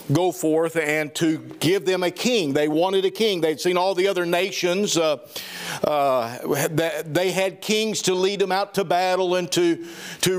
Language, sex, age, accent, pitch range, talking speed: English, male, 50-69, American, 160-195 Hz, 185 wpm